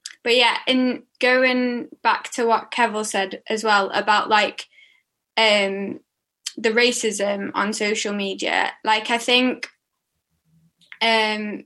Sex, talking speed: female, 120 wpm